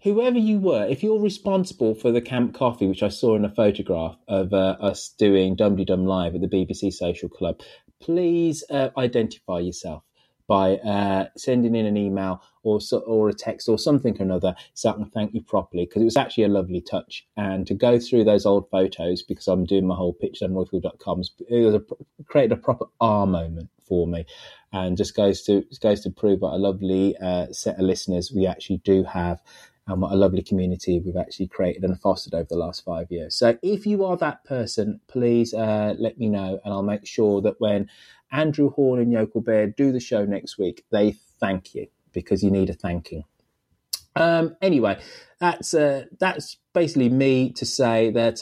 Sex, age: male, 20-39